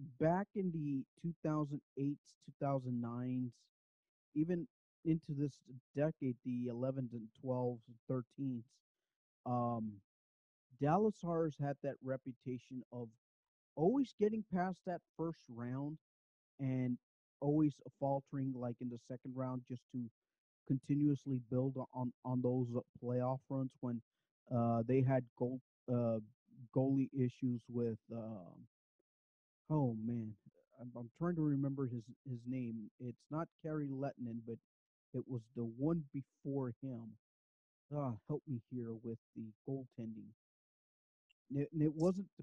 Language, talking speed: English, 125 wpm